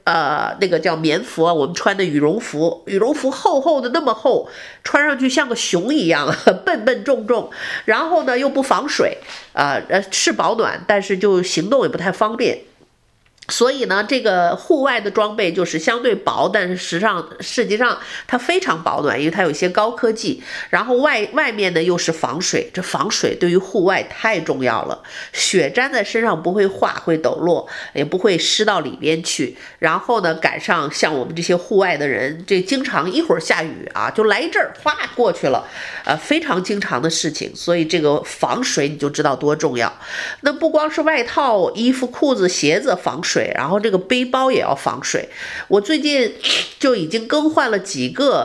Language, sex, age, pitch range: Chinese, female, 50-69, 170-265 Hz